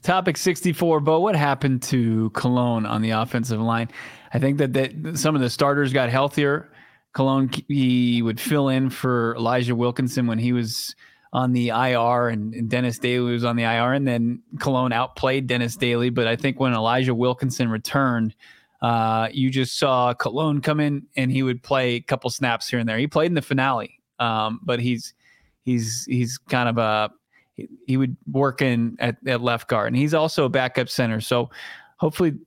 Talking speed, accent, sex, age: 190 wpm, American, male, 20-39